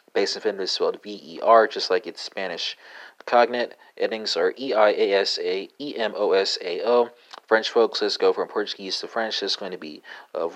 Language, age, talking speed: English, 30-49, 210 wpm